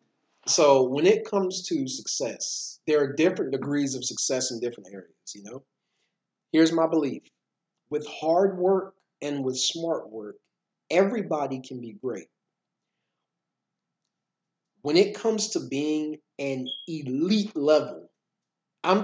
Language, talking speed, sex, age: English, 125 wpm, male, 40-59